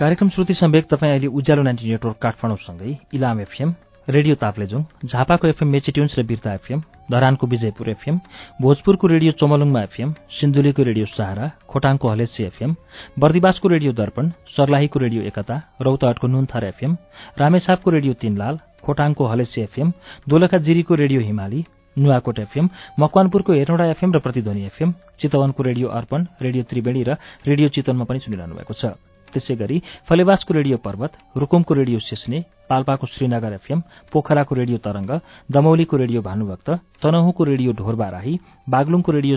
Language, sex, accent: English, male, Indian